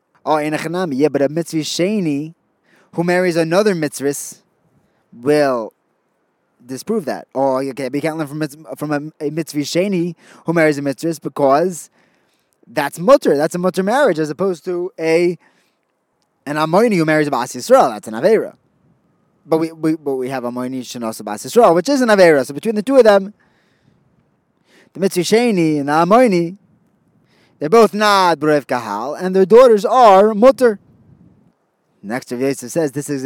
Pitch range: 145-195 Hz